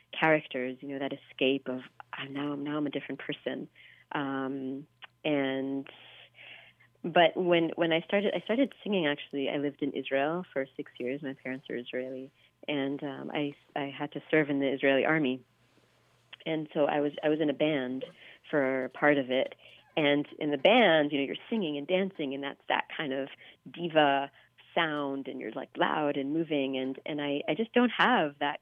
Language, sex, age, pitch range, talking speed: English, female, 40-59, 135-155 Hz, 190 wpm